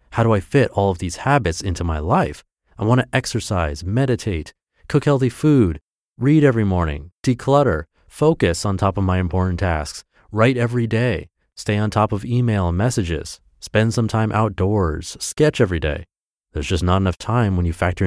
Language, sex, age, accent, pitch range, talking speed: English, male, 30-49, American, 90-125 Hz, 180 wpm